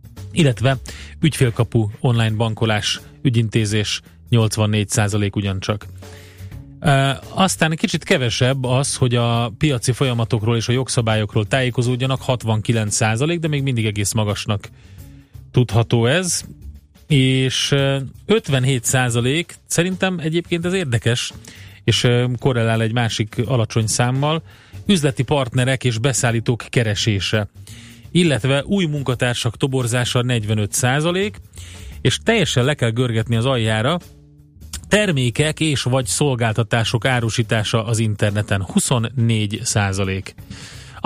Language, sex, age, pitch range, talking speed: Hungarian, male, 30-49, 110-135 Hz, 95 wpm